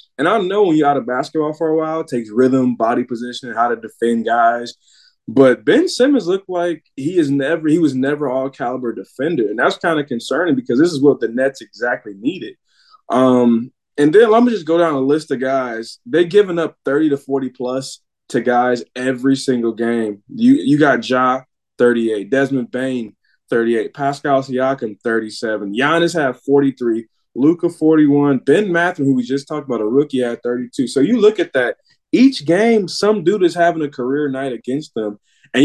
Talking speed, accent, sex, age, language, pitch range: 200 wpm, American, male, 20-39, English, 125-170 Hz